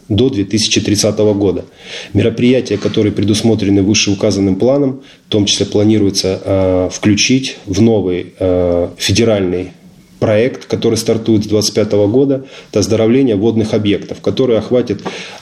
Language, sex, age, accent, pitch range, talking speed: Russian, male, 20-39, native, 100-115 Hz, 115 wpm